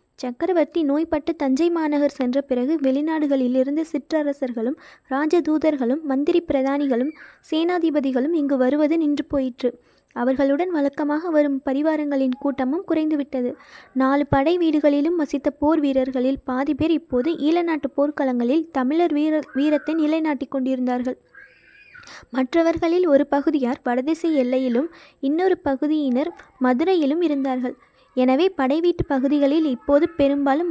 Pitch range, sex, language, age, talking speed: 265-315 Hz, female, Tamil, 20-39, 105 wpm